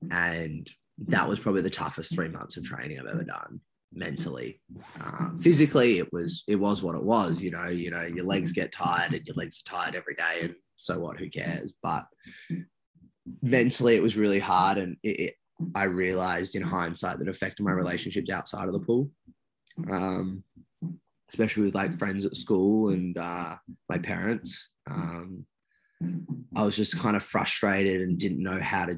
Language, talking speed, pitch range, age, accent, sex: English, 185 wpm, 90-105 Hz, 20-39, Australian, male